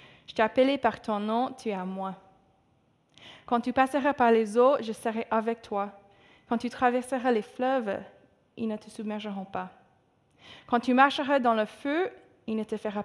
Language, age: French, 20-39